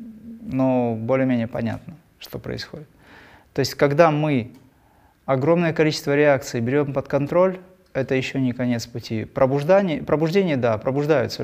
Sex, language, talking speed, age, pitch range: male, Russian, 120 wpm, 20-39, 115-140 Hz